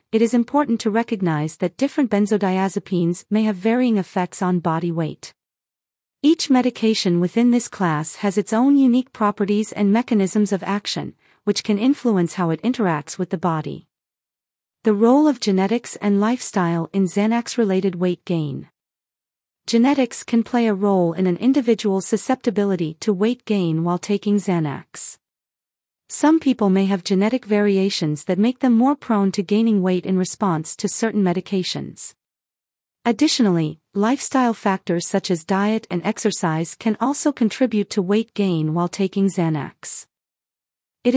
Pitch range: 185-230 Hz